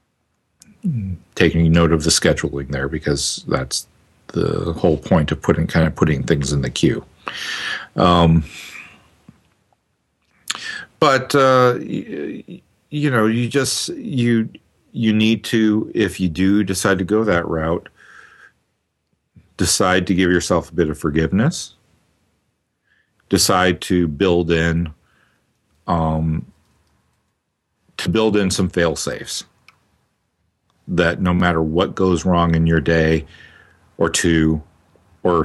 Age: 50-69